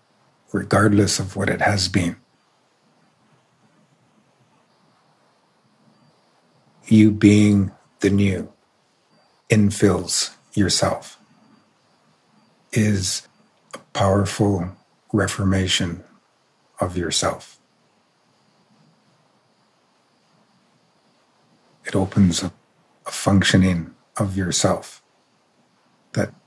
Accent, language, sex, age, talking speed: American, English, male, 50-69, 60 wpm